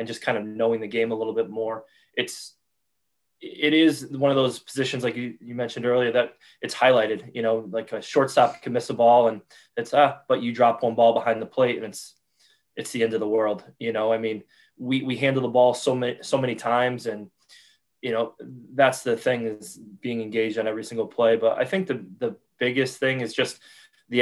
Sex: male